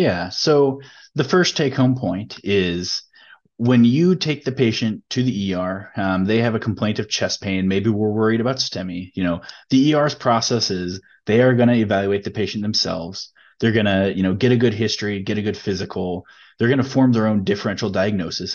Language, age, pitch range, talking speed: English, 30-49, 95-120 Hz, 205 wpm